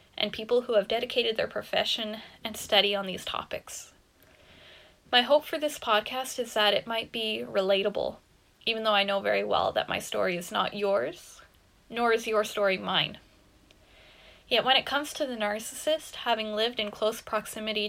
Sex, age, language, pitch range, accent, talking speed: female, 10-29, English, 200-235 Hz, American, 175 wpm